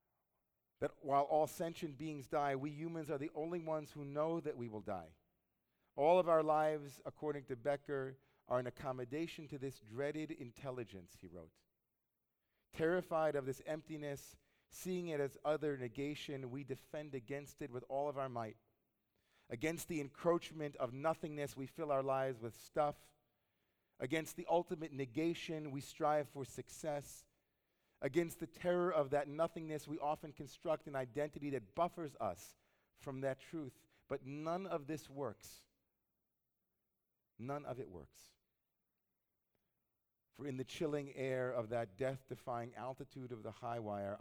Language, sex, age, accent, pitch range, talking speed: English, male, 40-59, American, 115-150 Hz, 150 wpm